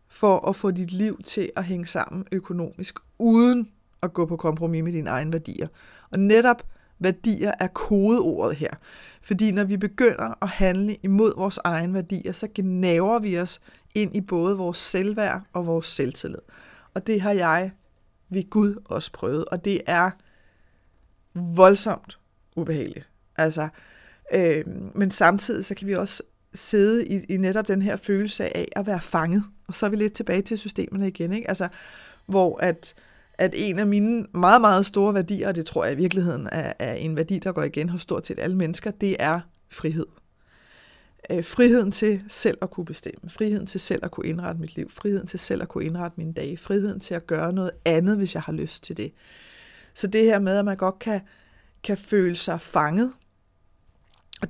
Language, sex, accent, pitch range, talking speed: Danish, female, native, 175-205 Hz, 185 wpm